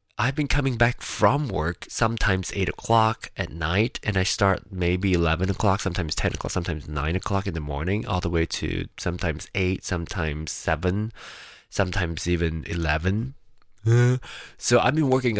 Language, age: English, 20-39